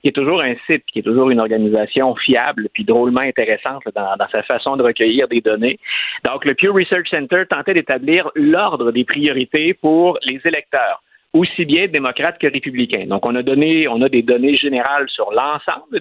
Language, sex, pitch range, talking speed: French, male, 120-175 Hz, 190 wpm